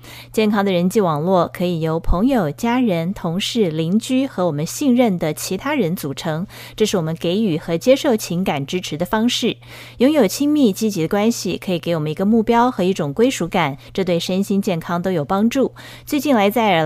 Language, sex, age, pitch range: Chinese, female, 30-49, 170-230 Hz